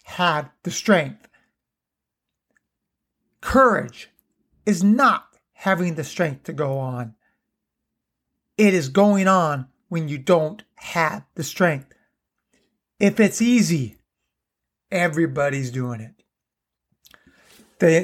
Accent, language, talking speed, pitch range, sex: American, English, 95 wpm, 155-205 Hz, male